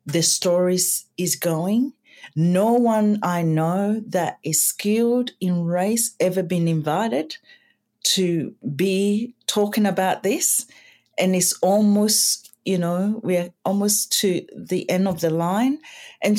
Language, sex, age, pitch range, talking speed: English, female, 40-59, 160-215 Hz, 130 wpm